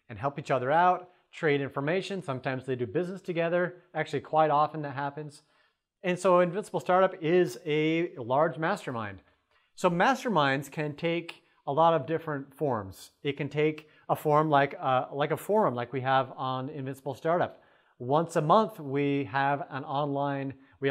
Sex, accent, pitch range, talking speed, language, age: male, American, 135-170 Hz, 165 wpm, English, 30-49